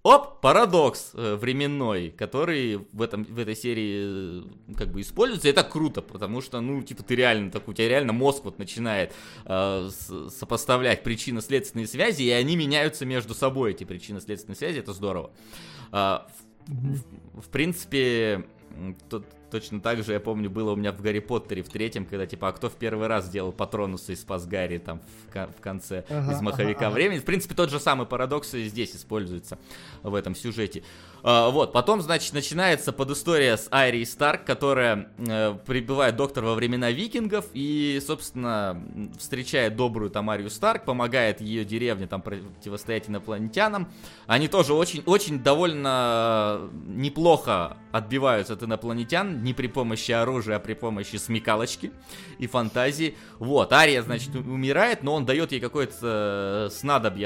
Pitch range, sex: 105-135 Hz, male